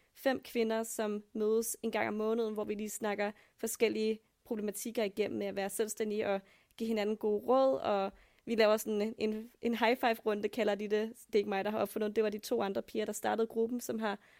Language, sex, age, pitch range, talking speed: Danish, female, 20-39, 210-230 Hz, 220 wpm